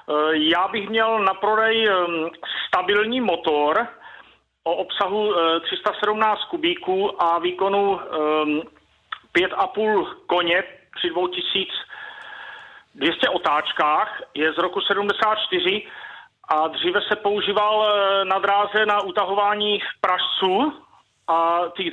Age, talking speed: 40-59, 90 wpm